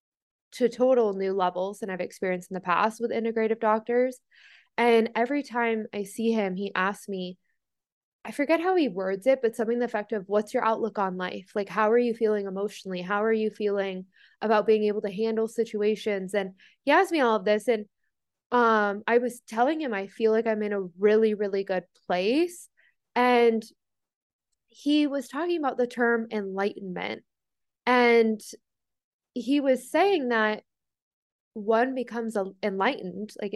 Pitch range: 205-245 Hz